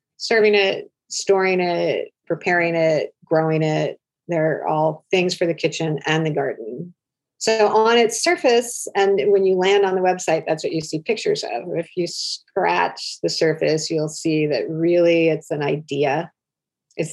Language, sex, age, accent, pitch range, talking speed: English, female, 40-59, American, 160-185 Hz, 165 wpm